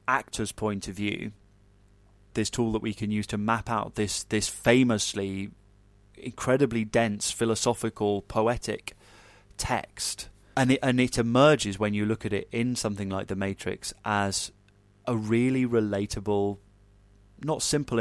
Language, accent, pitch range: English, British, 100-115 Hz